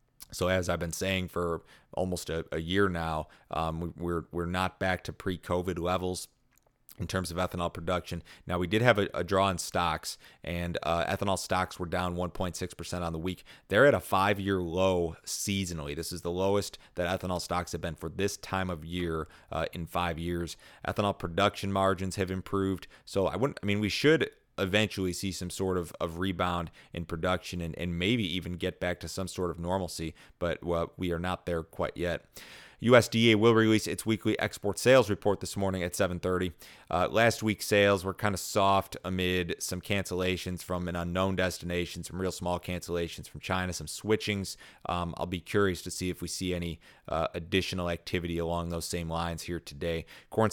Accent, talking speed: American, 195 wpm